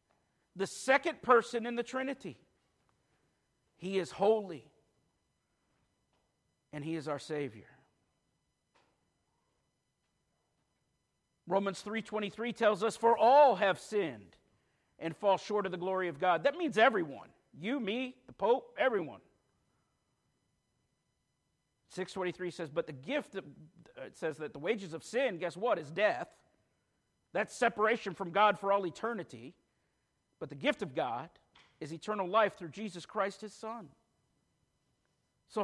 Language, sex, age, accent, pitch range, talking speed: English, male, 50-69, American, 185-245 Hz, 125 wpm